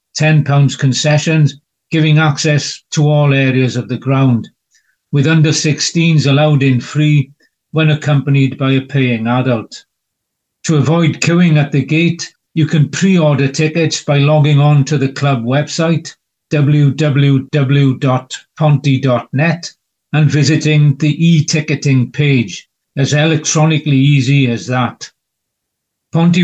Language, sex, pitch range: English, male, 140-155 Hz